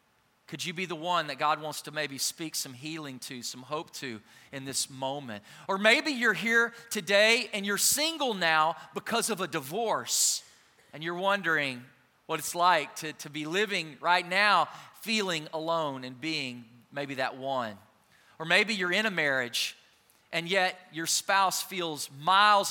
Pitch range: 150-195 Hz